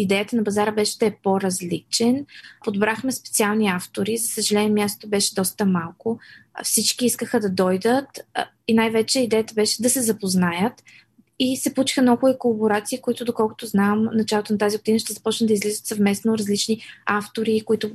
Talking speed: 160 wpm